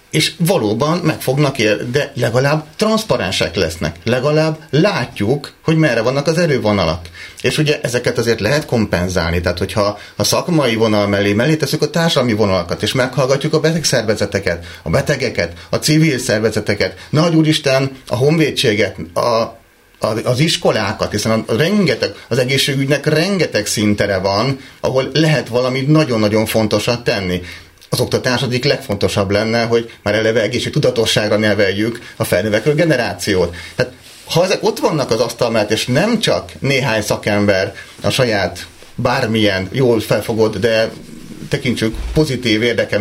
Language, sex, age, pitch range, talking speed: Hungarian, male, 30-49, 105-150 Hz, 135 wpm